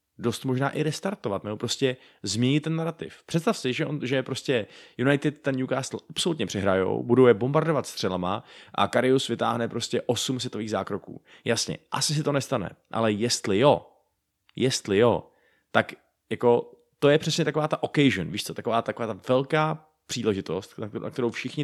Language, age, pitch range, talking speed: Czech, 20-39, 110-135 Hz, 165 wpm